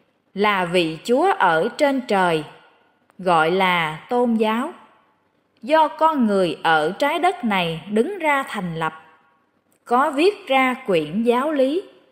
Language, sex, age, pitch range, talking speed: Vietnamese, female, 20-39, 190-270 Hz, 135 wpm